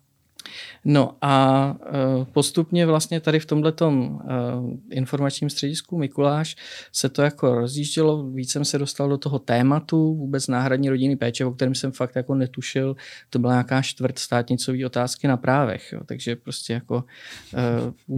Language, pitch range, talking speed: Czech, 125-140 Hz, 150 wpm